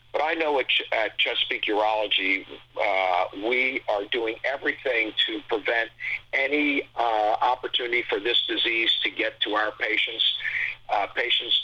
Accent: American